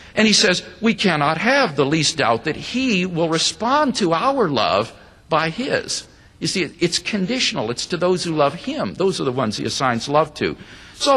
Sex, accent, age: male, American, 50-69